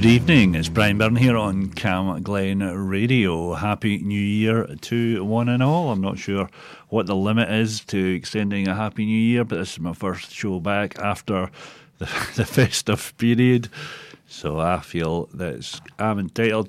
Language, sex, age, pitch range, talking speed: English, male, 40-59, 90-115 Hz, 175 wpm